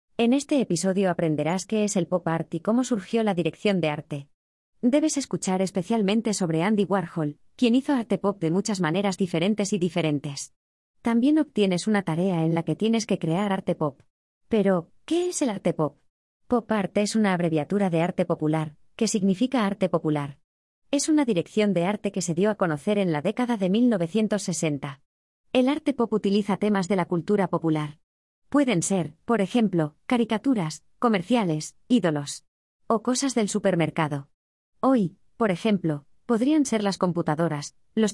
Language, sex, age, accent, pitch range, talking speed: Danish, female, 20-39, Spanish, 165-225 Hz, 165 wpm